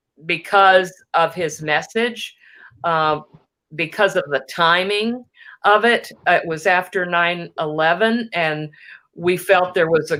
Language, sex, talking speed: English, female, 125 wpm